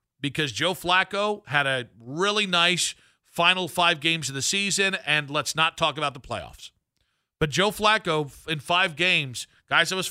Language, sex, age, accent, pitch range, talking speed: English, male, 40-59, American, 130-180 Hz, 170 wpm